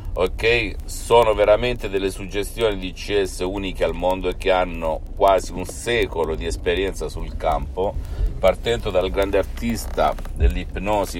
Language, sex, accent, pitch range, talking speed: Italian, male, native, 75-100 Hz, 135 wpm